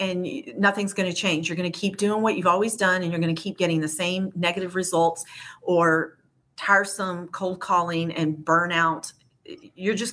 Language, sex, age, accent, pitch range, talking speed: English, female, 40-59, American, 170-220 Hz, 190 wpm